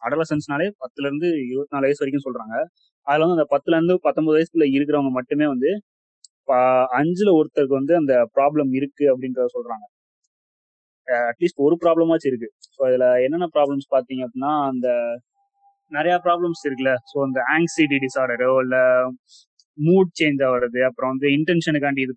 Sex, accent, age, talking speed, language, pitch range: male, native, 20-39, 135 wpm, Tamil, 135-170 Hz